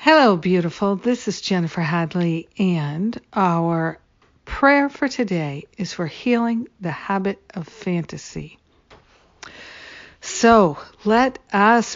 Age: 60-79